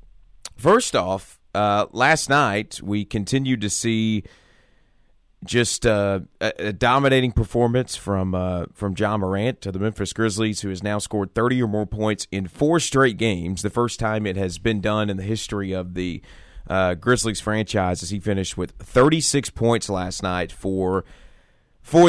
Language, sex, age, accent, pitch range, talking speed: English, male, 30-49, American, 95-115 Hz, 165 wpm